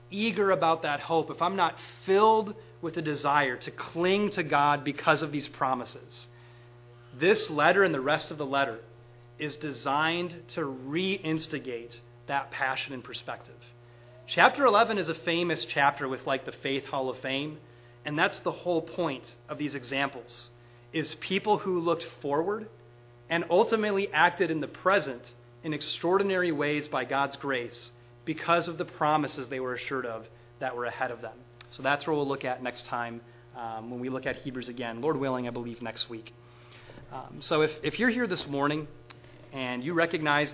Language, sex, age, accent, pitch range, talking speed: English, male, 30-49, American, 120-160 Hz, 175 wpm